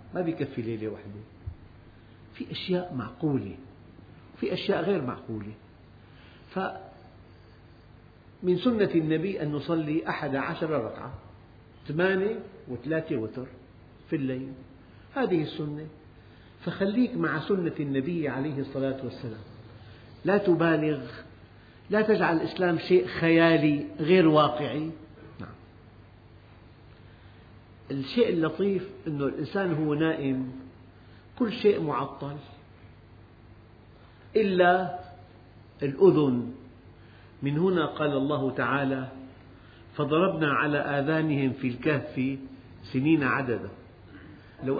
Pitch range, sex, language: 110-155 Hz, male, Arabic